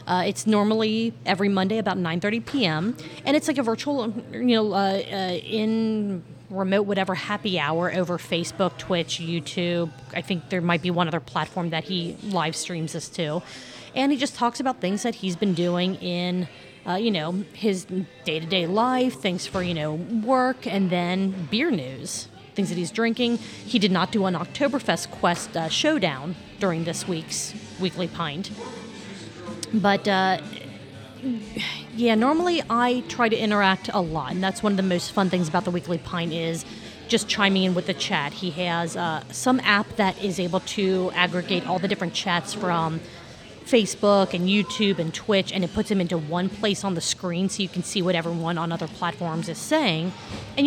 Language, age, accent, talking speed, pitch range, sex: English, 30-49, American, 185 wpm, 175-220 Hz, female